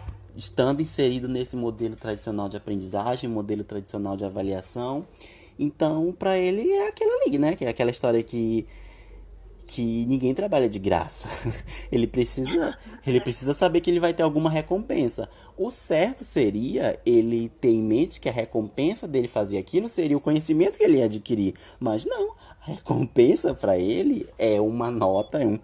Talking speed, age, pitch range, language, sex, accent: 165 wpm, 20-39, 110-165 Hz, Portuguese, male, Brazilian